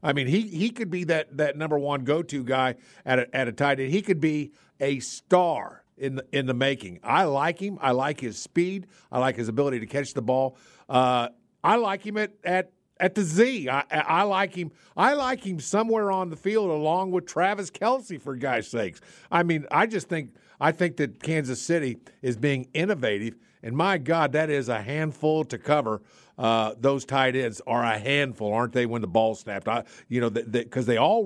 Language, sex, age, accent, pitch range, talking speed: English, male, 50-69, American, 130-190 Hz, 220 wpm